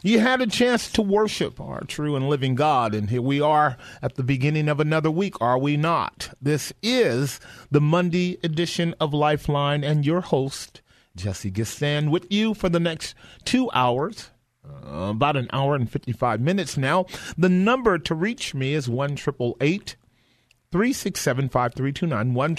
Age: 40-59